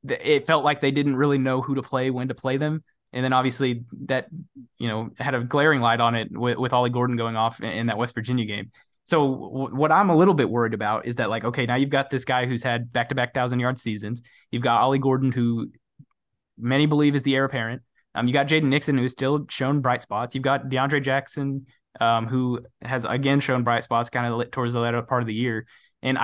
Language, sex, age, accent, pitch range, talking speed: English, male, 20-39, American, 120-140 Hz, 235 wpm